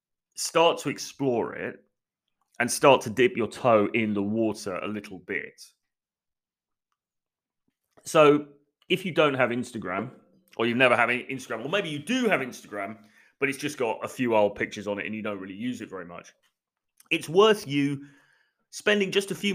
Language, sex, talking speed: English, male, 180 wpm